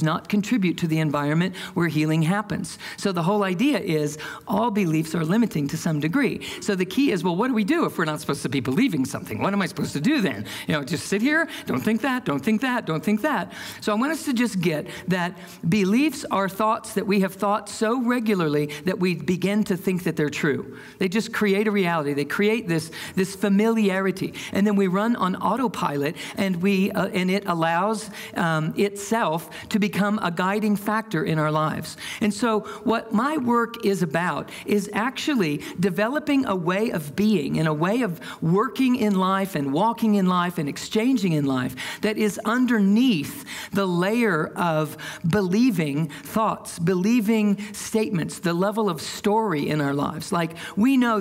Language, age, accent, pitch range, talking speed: English, 50-69, American, 170-220 Hz, 190 wpm